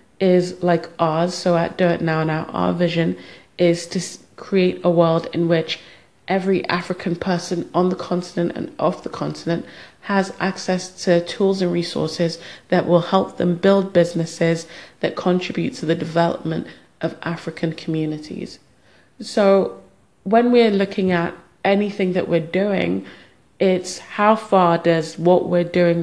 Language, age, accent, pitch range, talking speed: English, 30-49, British, 160-180 Hz, 150 wpm